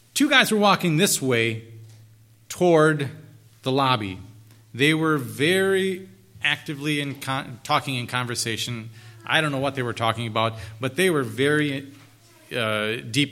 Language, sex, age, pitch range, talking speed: English, male, 30-49, 115-155 Hz, 135 wpm